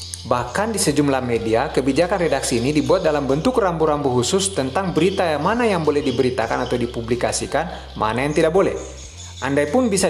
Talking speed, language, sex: 165 wpm, Indonesian, male